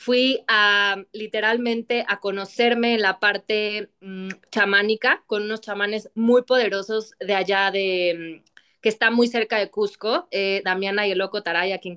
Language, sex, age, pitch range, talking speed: Spanish, female, 20-39, 195-230 Hz, 150 wpm